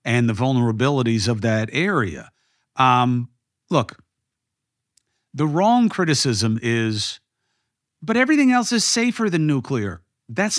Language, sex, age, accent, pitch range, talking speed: English, male, 50-69, American, 120-190 Hz, 115 wpm